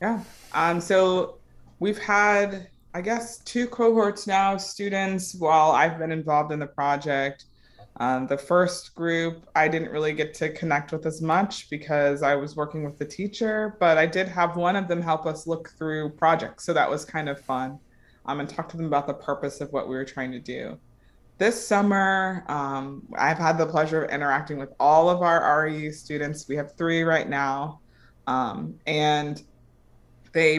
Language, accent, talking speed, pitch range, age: English, American, 185 wpm, 140-170 Hz, 20-39